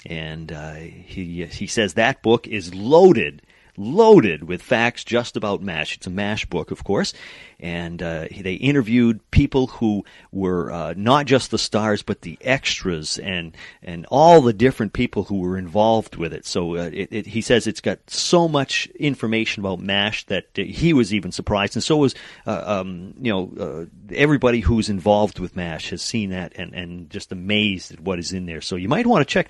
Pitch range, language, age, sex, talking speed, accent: 95-130 Hz, English, 40-59, male, 195 wpm, American